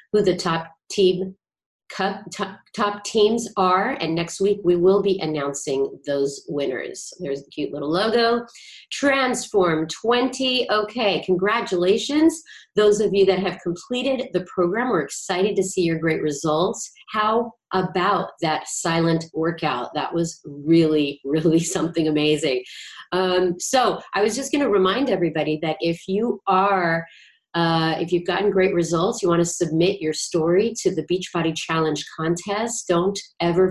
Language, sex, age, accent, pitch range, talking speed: English, female, 40-59, American, 160-200 Hz, 145 wpm